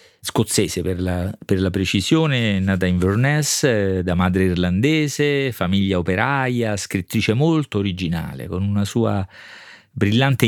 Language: Italian